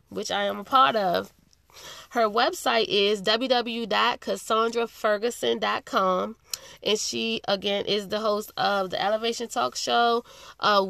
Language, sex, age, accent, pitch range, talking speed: English, female, 20-39, American, 200-240 Hz, 120 wpm